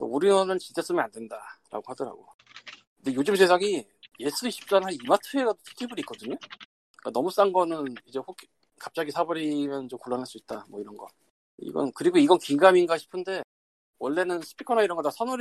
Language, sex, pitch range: Korean, male, 125-205 Hz